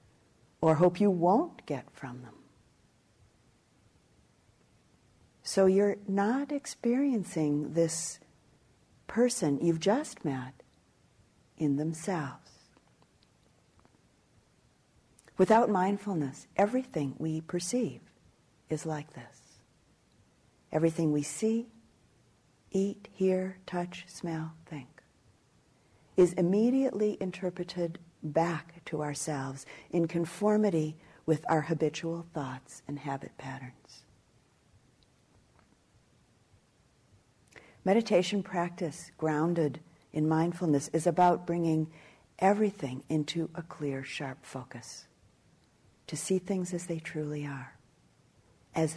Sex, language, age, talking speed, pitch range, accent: female, English, 50-69, 85 wpm, 145-180 Hz, American